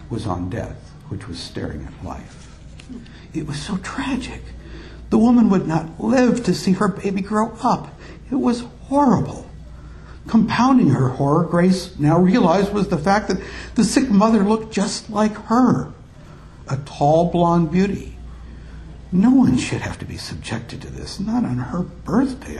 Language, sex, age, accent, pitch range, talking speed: English, male, 70-89, American, 135-210 Hz, 160 wpm